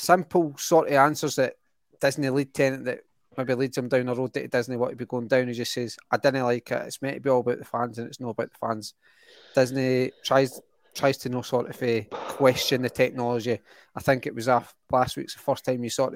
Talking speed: 250 wpm